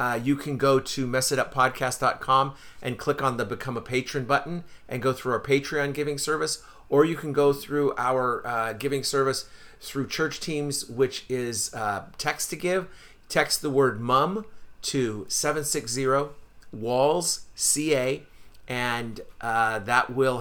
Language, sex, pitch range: English, male, 120-145 Hz